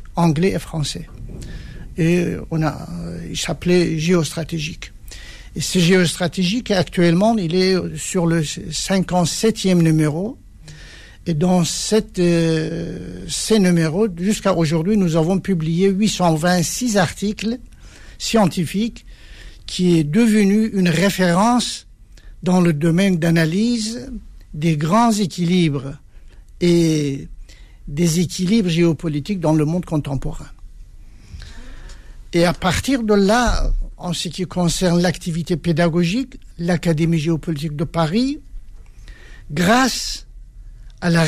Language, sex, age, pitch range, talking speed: French, male, 60-79, 160-195 Hz, 105 wpm